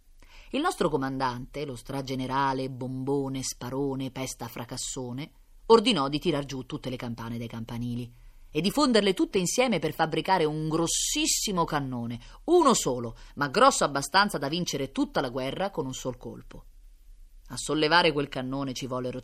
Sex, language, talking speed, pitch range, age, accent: female, Italian, 150 wpm, 125-155 Hz, 30-49, native